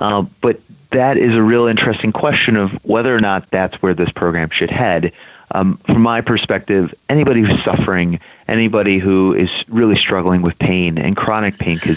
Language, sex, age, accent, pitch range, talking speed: English, male, 30-49, American, 90-110 Hz, 175 wpm